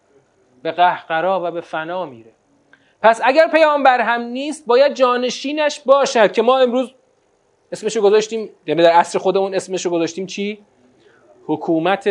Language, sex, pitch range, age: Persian, male, 165-275 Hz, 30-49